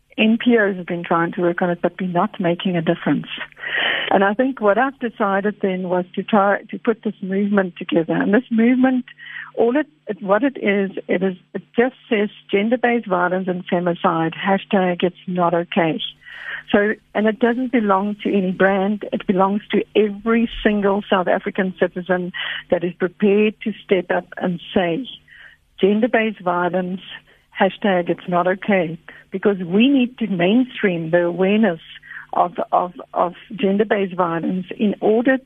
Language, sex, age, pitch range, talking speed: English, female, 60-79, 185-230 Hz, 160 wpm